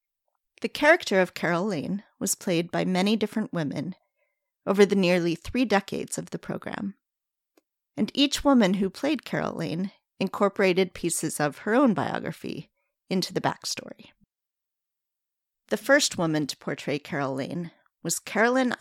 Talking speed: 140 wpm